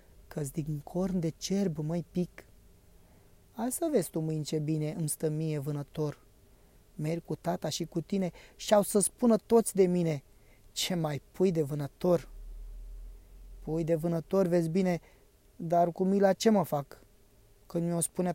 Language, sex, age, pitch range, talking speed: Romanian, male, 20-39, 155-210 Hz, 165 wpm